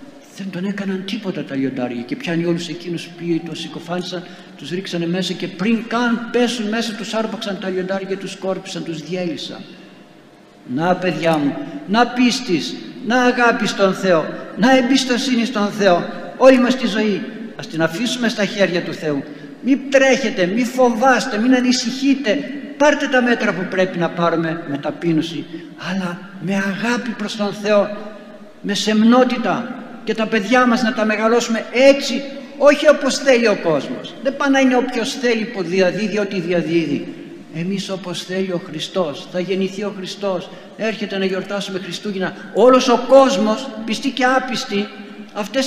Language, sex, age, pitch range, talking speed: Greek, male, 60-79, 180-250 Hz, 155 wpm